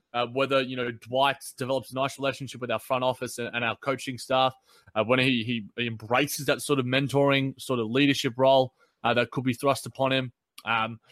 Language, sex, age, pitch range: English, male, 20-39, 120-140 Hz